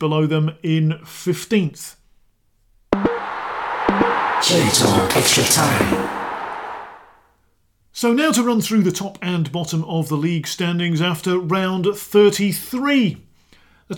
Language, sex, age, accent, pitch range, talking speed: English, male, 40-59, British, 140-205 Hz, 90 wpm